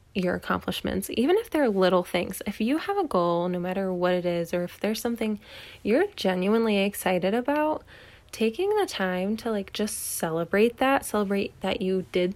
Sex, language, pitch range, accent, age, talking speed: female, English, 180-220 Hz, American, 20-39, 180 wpm